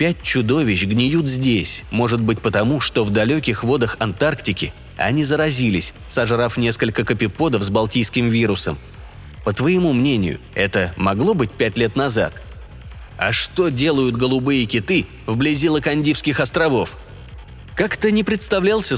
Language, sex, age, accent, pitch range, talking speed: Russian, male, 20-39, native, 115-160 Hz, 125 wpm